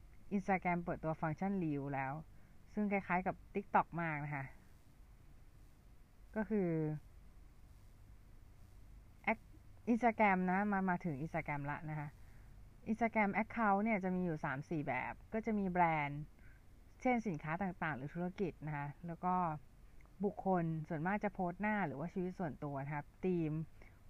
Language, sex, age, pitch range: Thai, female, 20-39, 145-190 Hz